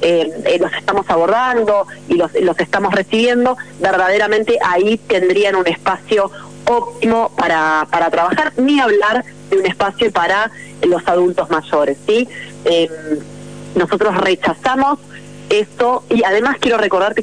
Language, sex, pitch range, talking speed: Spanish, female, 175-245 Hz, 130 wpm